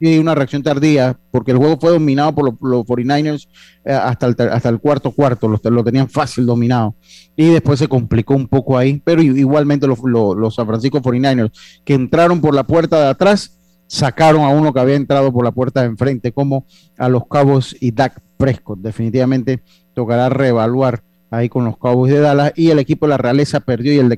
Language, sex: Spanish, male